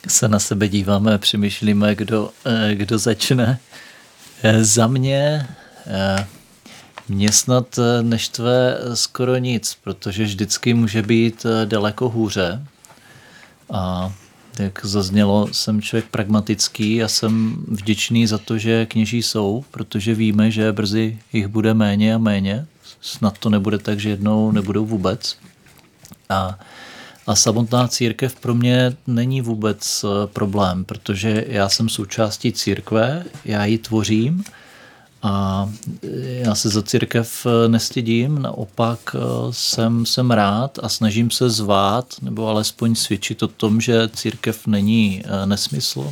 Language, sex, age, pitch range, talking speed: Czech, male, 40-59, 105-115 Hz, 120 wpm